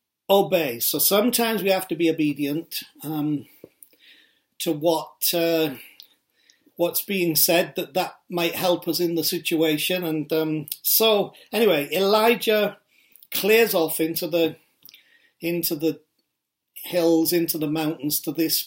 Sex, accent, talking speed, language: male, British, 130 wpm, English